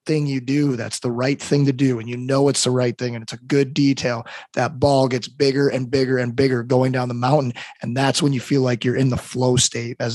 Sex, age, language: male, 30-49, English